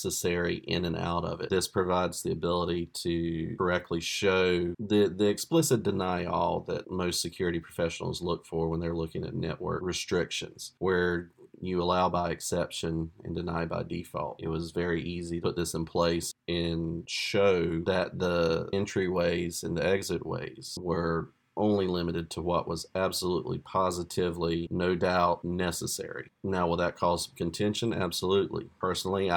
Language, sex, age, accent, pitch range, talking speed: English, male, 40-59, American, 85-95 Hz, 155 wpm